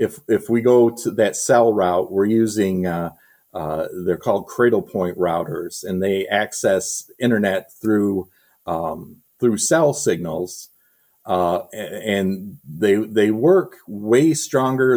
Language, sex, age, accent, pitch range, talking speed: English, male, 40-59, American, 95-125 Hz, 130 wpm